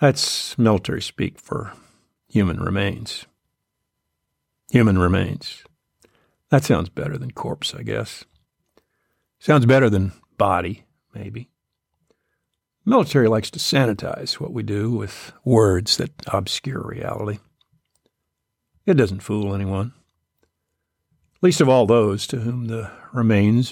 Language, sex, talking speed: English, male, 110 wpm